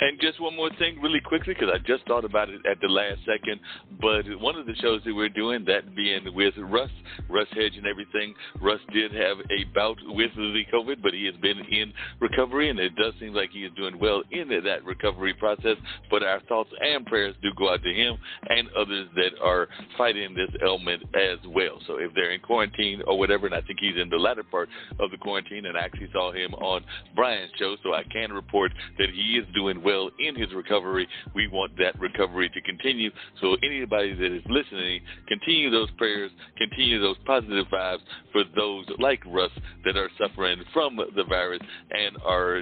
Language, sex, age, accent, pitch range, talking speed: English, male, 60-79, American, 95-115 Hz, 205 wpm